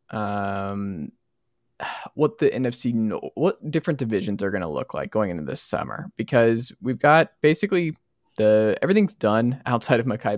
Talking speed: 150 wpm